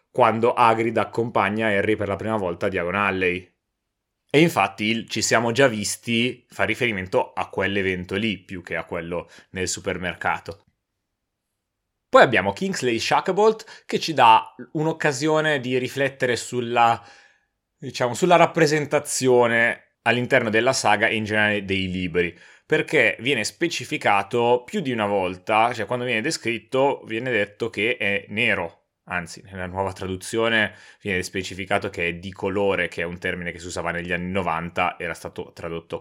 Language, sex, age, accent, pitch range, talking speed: Italian, male, 30-49, native, 95-125 Hz, 150 wpm